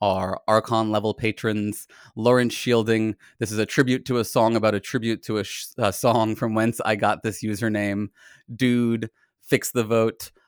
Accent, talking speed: American, 170 wpm